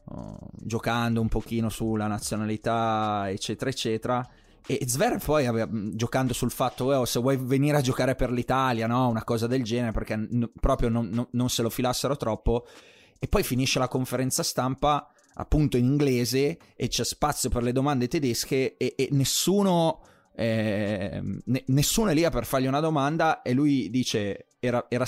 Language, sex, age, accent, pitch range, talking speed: Italian, male, 20-39, native, 115-140 Hz, 165 wpm